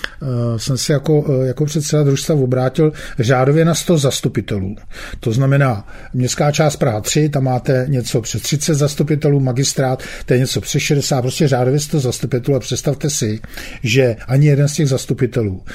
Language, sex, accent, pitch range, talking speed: English, male, Czech, 125-150 Hz, 155 wpm